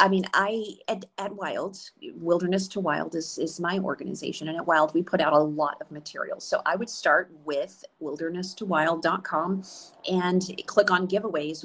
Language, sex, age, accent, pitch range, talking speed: English, female, 40-59, American, 155-185 Hz, 170 wpm